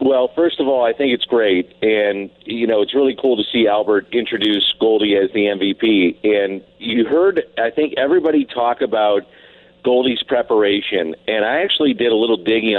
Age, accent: 50-69, American